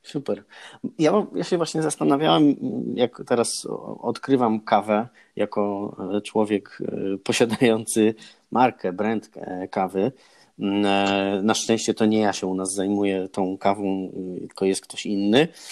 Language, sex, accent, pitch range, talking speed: Polish, male, native, 105-120 Hz, 120 wpm